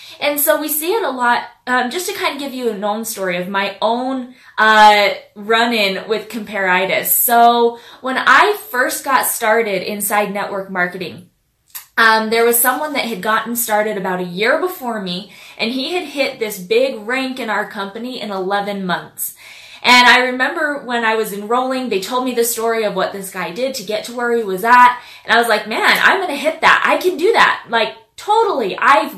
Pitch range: 210-265 Hz